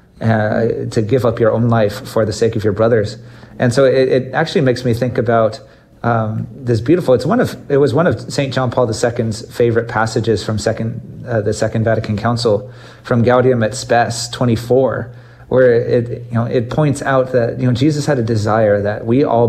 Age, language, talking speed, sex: 30-49, English, 205 wpm, male